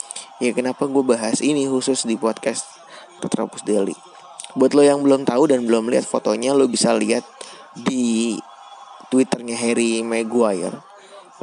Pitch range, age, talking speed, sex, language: 110-125 Hz, 20-39, 135 wpm, male, Indonesian